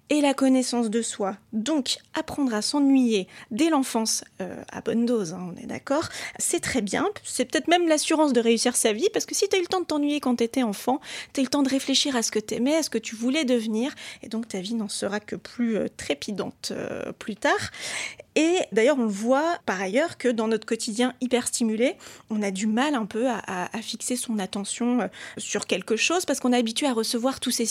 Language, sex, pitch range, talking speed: French, female, 215-270 Hz, 240 wpm